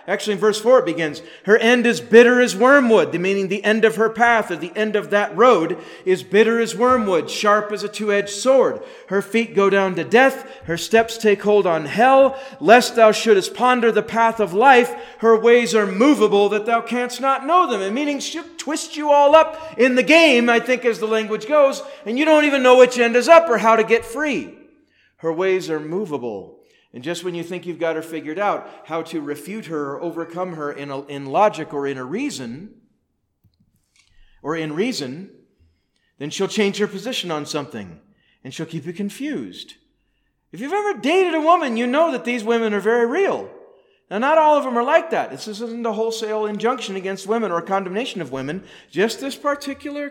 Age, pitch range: 40-59, 180-255 Hz